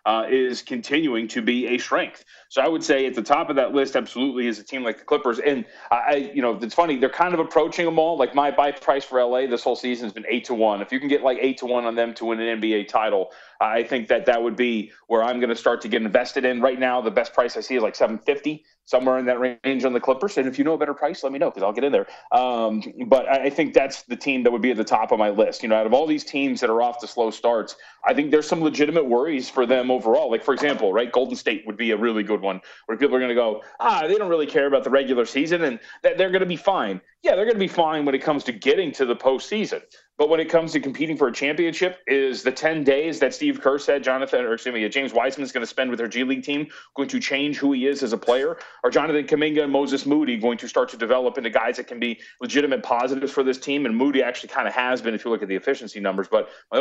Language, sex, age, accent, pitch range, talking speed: English, male, 30-49, American, 120-155 Hz, 290 wpm